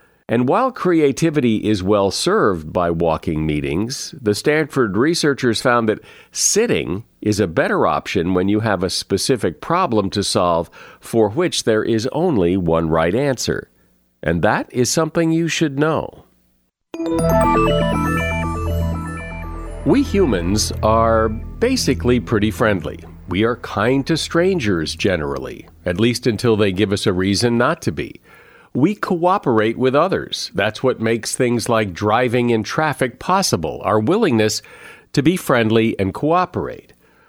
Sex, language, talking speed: male, English, 135 wpm